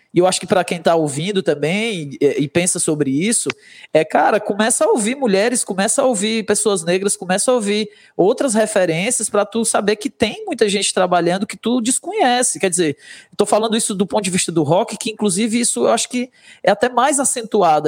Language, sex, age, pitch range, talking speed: Hungarian, male, 20-39, 165-220 Hz, 200 wpm